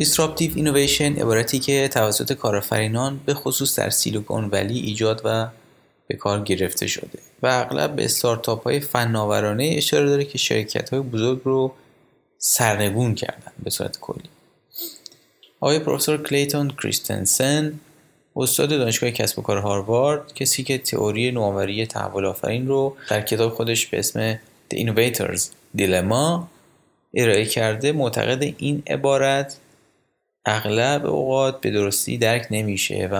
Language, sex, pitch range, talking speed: Persian, male, 105-140 Hz, 130 wpm